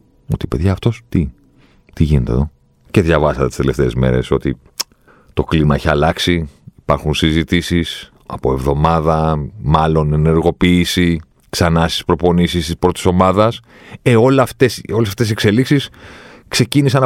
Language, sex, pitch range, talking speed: Greek, male, 75-105 Hz, 125 wpm